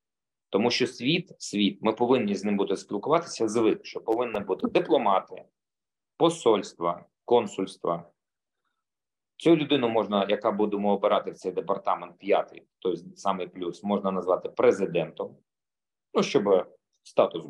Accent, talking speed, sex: native, 125 wpm, male